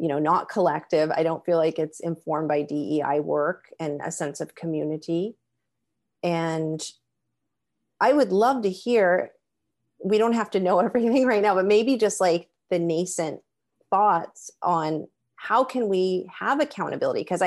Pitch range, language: 155-200 Hz, English